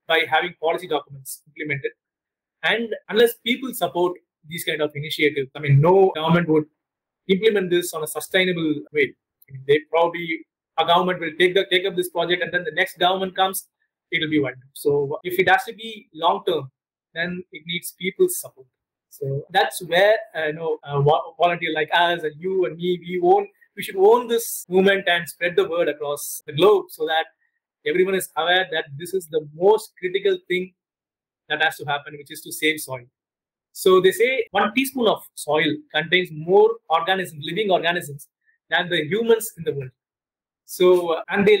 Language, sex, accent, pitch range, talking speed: English, male, Indian, 155-195 Hz, 185 wpm